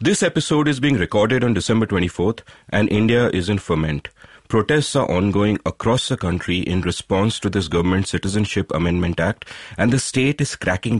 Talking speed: 175 wpm